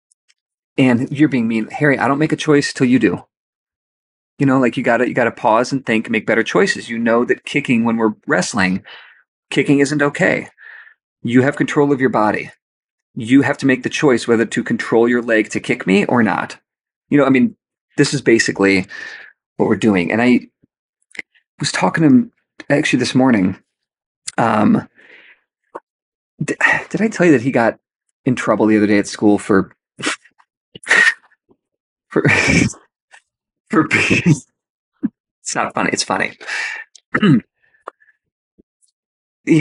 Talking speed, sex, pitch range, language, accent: 160 wpm, male, 115-160 Hz, English, American